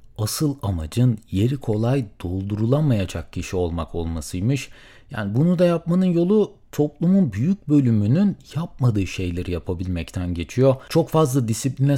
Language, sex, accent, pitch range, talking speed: Turkish, male, native, 100-145 Hz, 115 wpm